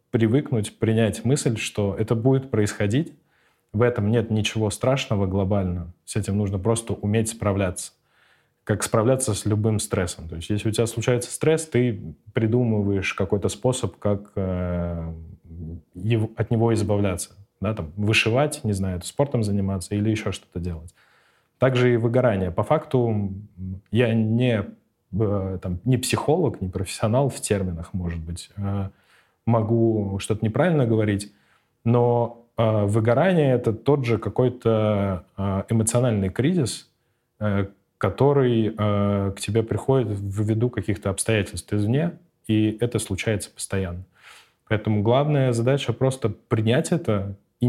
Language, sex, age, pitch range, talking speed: Russian, male, 20-39, 100-120 Hz, 125 wpm